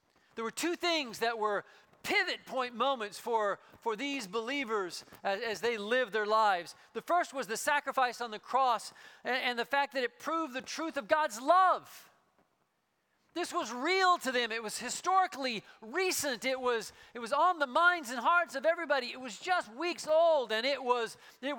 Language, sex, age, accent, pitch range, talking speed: English, male, 40-59, American, 240-330 Hz, 190 wpm